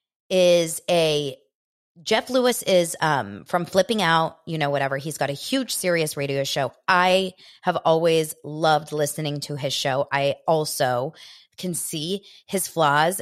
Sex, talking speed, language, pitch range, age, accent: female, 150 wpm, English, 145-185 Hz, 20-39, American